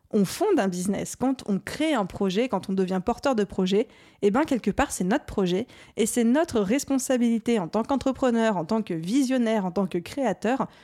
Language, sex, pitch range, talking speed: French, female, 195-245 Hz, 205 wpm